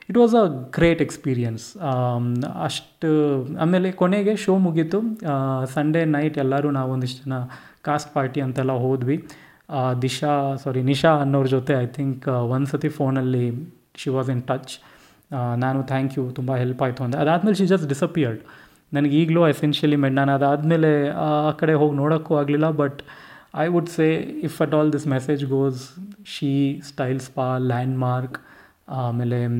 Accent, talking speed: native, 150 wpm